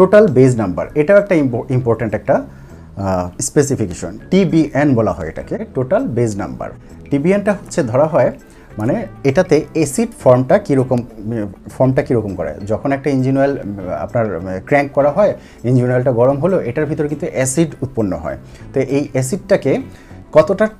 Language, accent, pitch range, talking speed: Bengali, native, 110-150 Hz, 125 wpm